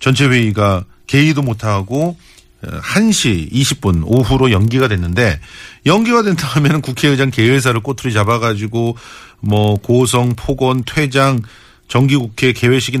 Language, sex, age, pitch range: Korean, male, 40-59, 105-135 Hz